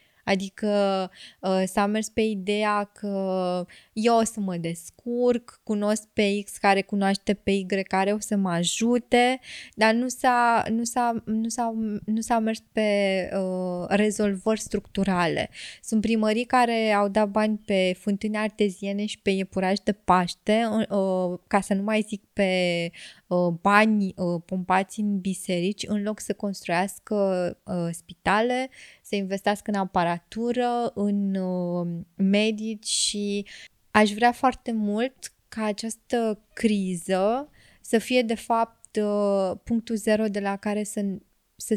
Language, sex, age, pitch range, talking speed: Romanian, female, 20-39, 195-225 Hz, 130 wpm